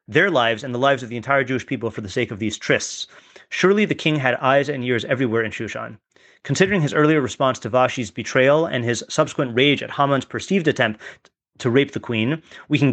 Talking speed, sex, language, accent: 220 wpm, male, English, American